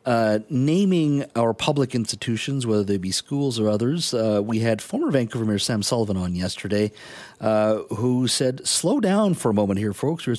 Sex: male